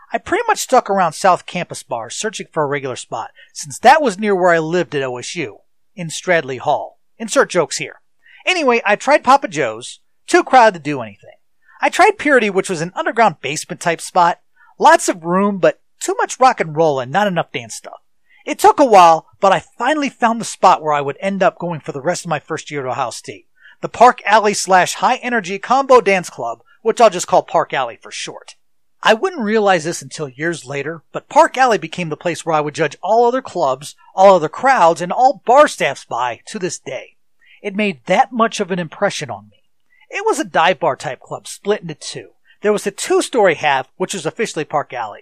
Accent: American